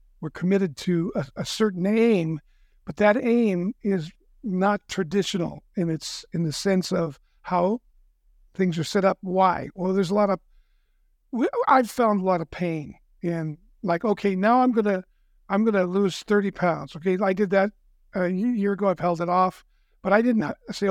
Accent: American